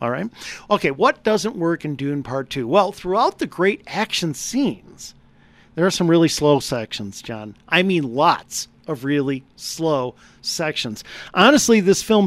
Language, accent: English, American